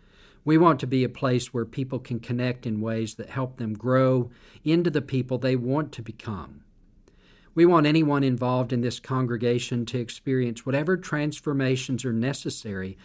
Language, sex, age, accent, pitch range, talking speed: English, male, 50-69, American, 105-130 Hz, 165 wpm